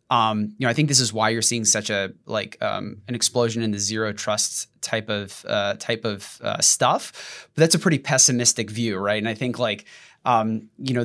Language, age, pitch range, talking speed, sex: English, 20-39, 110-130 Hz, 225 wpm, male